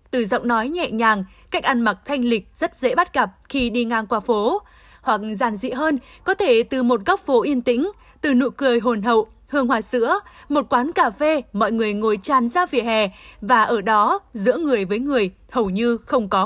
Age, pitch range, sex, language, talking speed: 20-39, 230-290 Hz, female, Vietnamese, 220 wpm